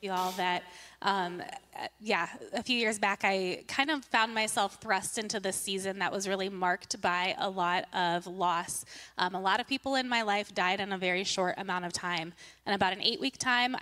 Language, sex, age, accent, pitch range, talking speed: English, female, 20-39, American, 185-230 Hz, 215 wpm